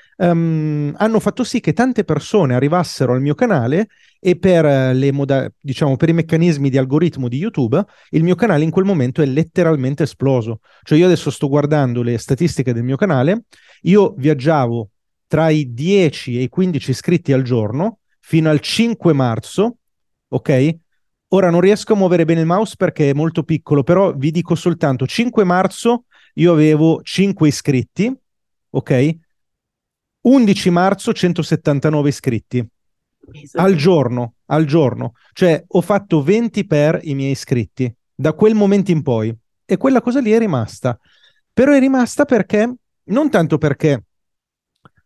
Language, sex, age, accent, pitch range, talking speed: Italian, male, 30-49, native, 140-190 Hz, 150 wpm